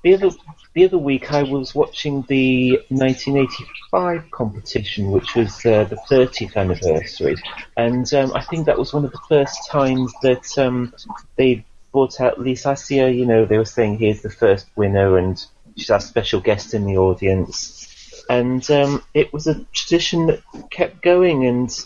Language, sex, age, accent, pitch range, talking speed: English, male, 30-49, British, 100-140 Hz, 170 wpm